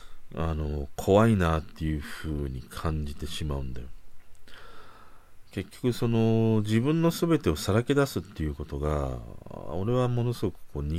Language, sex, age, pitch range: Japanese, male, 40-59, 75-110 Hz